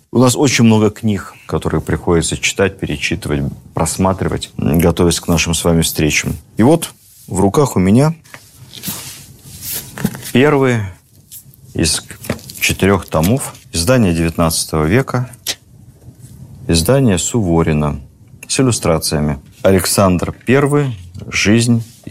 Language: Russian